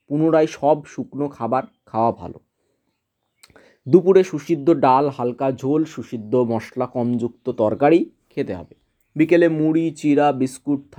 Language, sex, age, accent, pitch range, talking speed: Bengali, male, 30-49, native, 125-170 Hz, 115 wpm